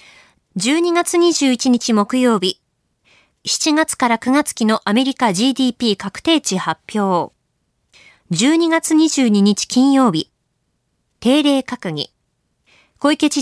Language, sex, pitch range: Japanese, female, 210-285 Hz